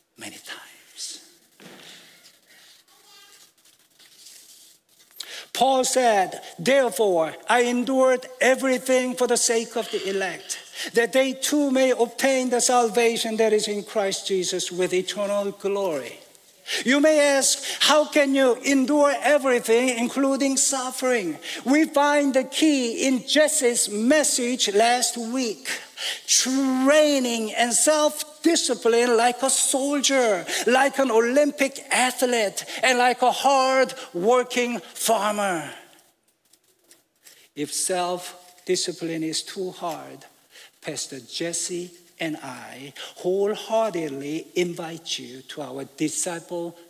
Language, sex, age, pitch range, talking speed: English, male, 60-79, 195-270 Hz, 100 wpm